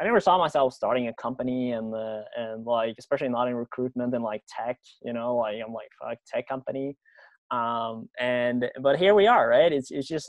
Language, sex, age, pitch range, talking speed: English, male, 20-39, 115-135 Hz, 220 wpm